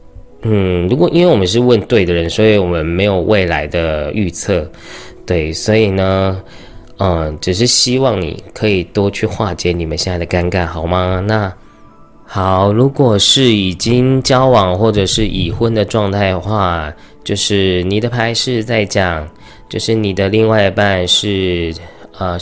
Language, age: Chinese, 20-39